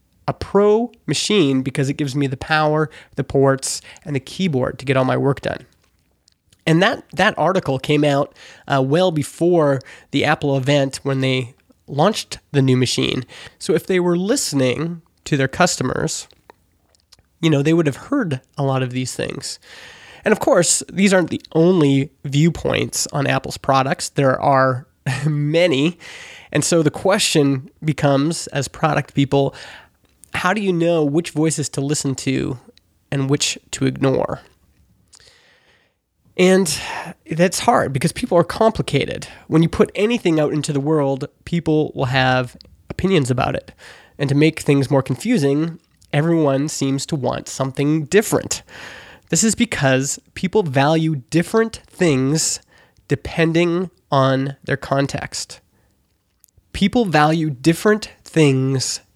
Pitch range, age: 135-170 Hz, 20-39